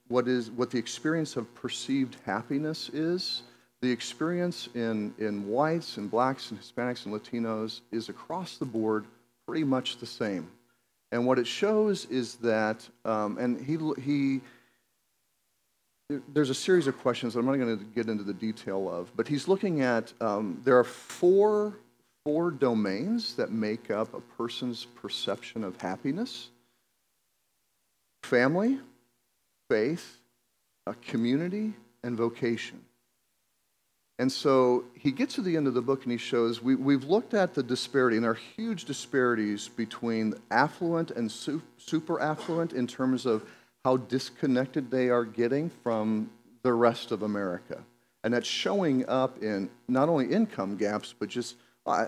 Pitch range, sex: 115-140 Hz, male